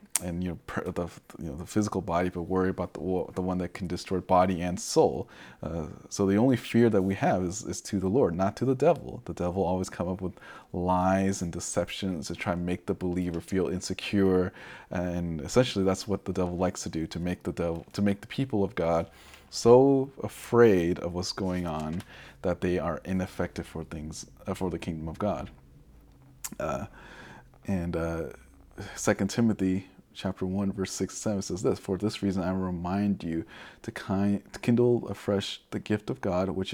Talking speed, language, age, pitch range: 195 wpm, English, 30-49, 90-100 Hz